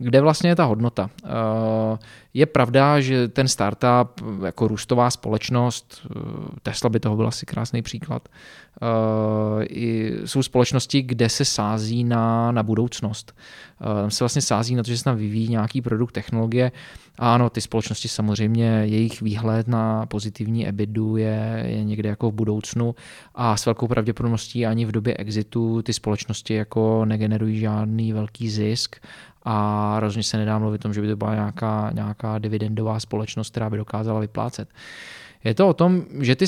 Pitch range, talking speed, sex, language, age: 110-125 Hz, 160 wpm, male, Slovak, 20-39